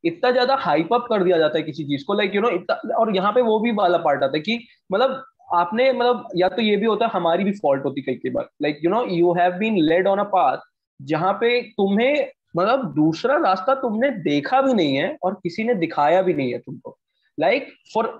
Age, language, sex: 20-39, Hindi, male